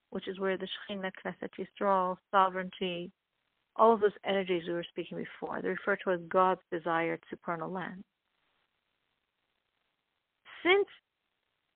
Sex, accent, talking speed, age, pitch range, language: female, American, 120 wpm, 40-59, 190-230 Hz, English